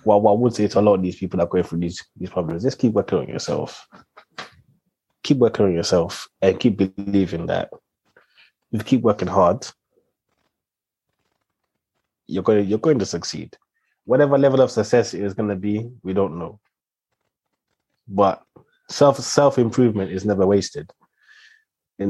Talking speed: 175 wpm